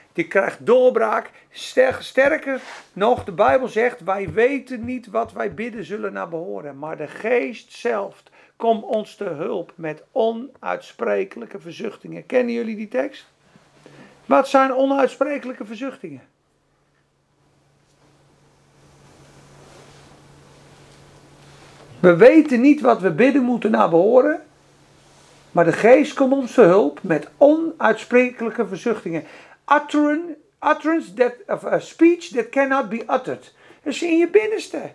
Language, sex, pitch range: Dutch, male, 230-320 Hz